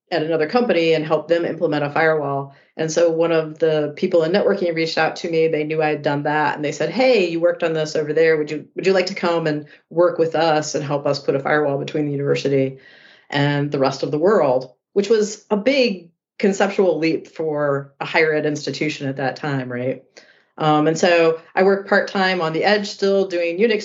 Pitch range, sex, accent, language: 145-165 Hz, female, American, English